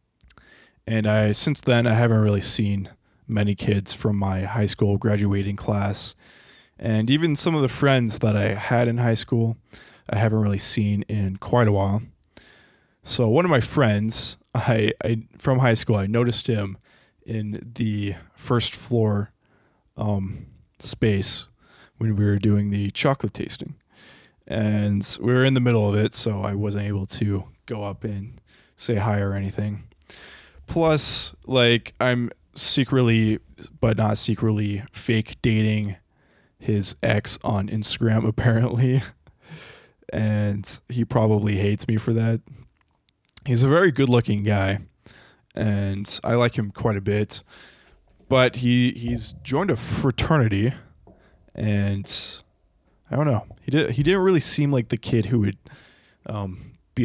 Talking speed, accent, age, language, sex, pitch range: 145 wpm, American, 20-39, English, male, 105-120 Hz